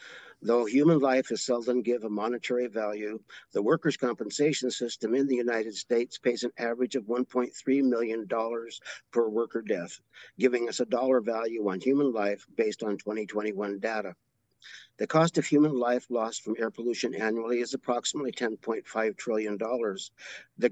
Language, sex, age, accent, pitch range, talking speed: English, male, 50-69, American, 110-125 Hz, 155 wpm